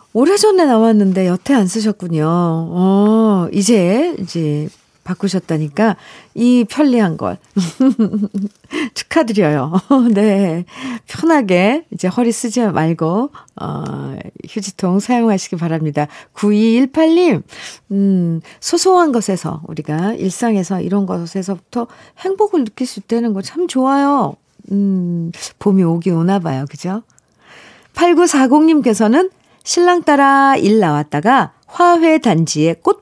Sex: female